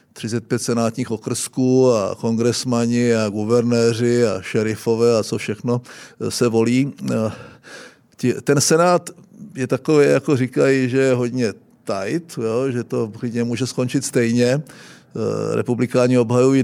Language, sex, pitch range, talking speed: Czech, male, 115-135 Hz, 115 wpm